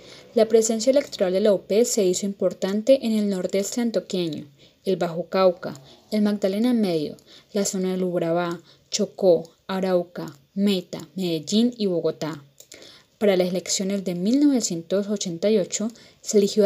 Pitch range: 180-220 Hz